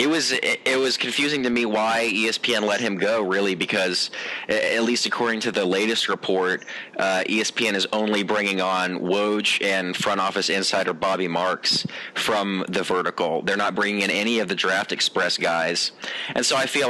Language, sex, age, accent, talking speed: English, male, 30-49, American, 180 wpm